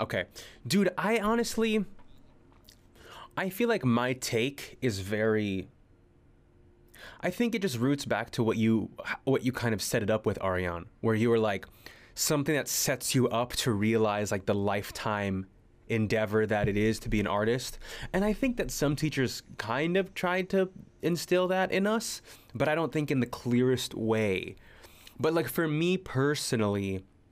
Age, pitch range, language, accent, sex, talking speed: 20-39, 100-130 Hz, English, American, male, 170 wpm